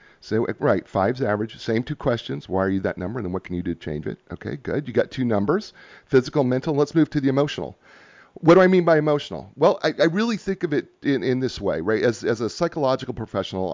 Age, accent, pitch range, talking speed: 40-59, American, 105-150 Hz, 250 wpm